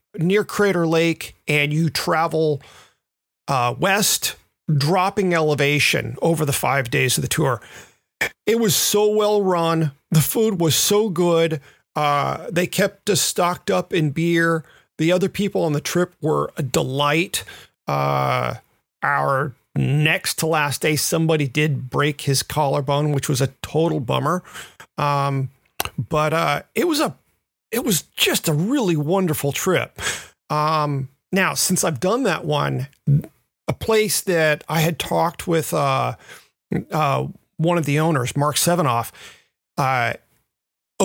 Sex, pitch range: male, 140-175 Hz